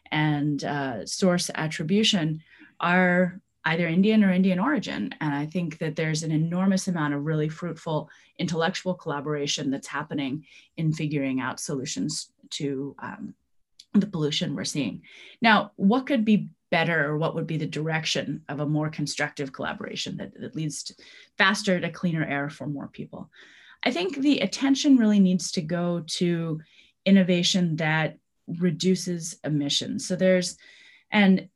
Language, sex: English, female